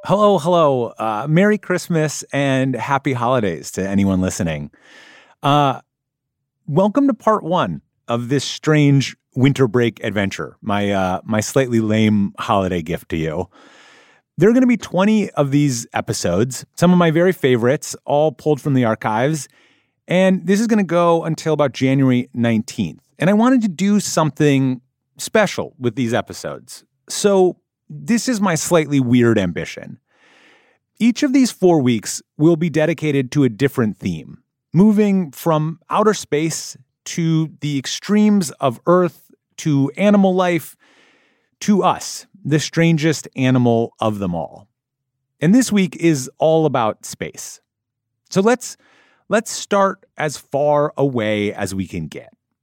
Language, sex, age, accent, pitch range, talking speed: English, male, 30-49, American, 120-180 Hz, 145 wpm